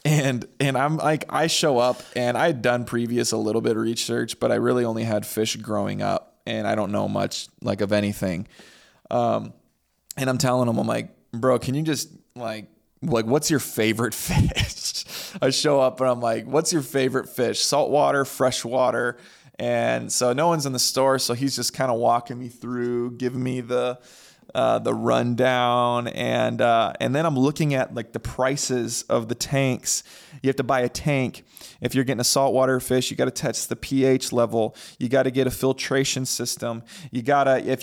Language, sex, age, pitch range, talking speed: English, male, 20-39, 120-135 Hz, 200 wpm